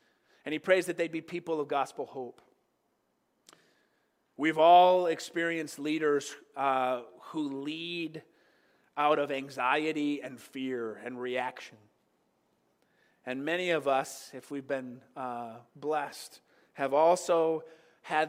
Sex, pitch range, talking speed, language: male, 135-165 Hz, 120 wpm, English